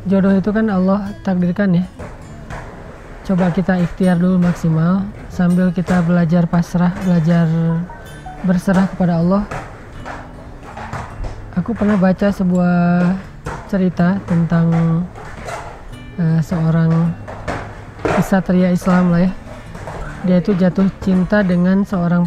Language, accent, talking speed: Indonesian, native, 100 wpm